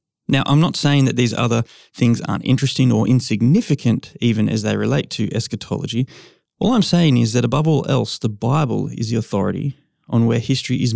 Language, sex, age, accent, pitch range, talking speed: English, male, 20-39, Australian, 110-140 Hz, 190 wpm